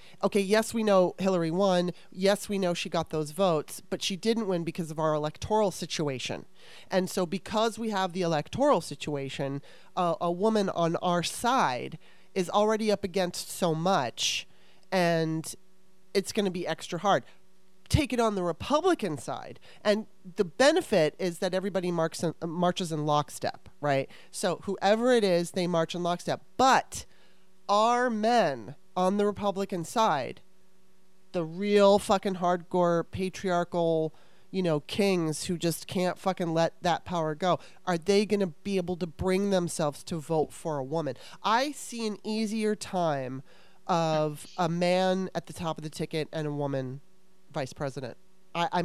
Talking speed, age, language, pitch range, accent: 165 wpm, 30-49, English, 165-200 Hz, American